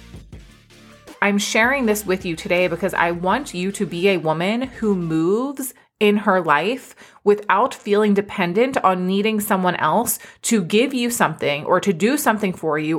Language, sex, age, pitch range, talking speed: English, female, 30-49, 175-215 Hz, 165 wpm